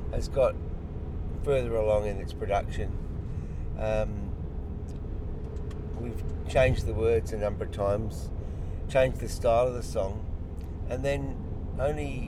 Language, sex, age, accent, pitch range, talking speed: English, male, 50-69, British, 85-105 Hz, 125 wpm